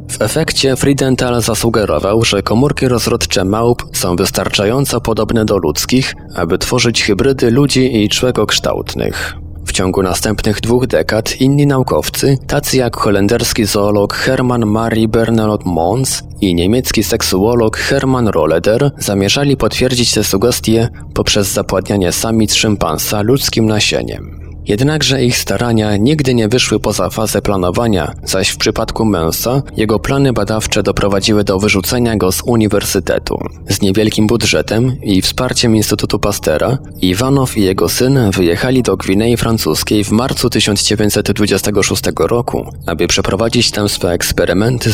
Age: 20-39